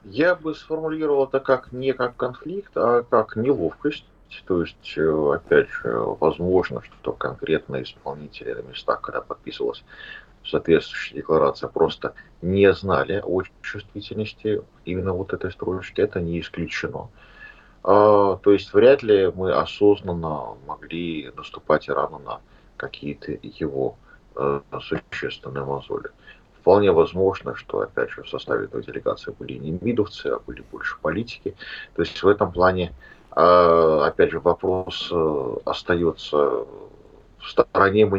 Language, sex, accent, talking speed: Russian, male, native, 125 wpm